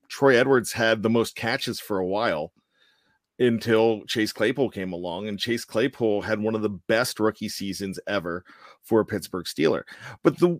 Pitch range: 110-145 Hz